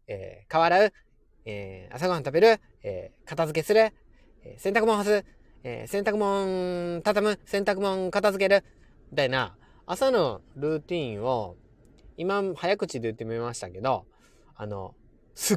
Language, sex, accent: Japanese, male, native